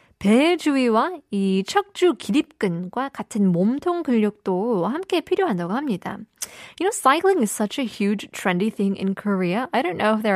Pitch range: 190-265 Hz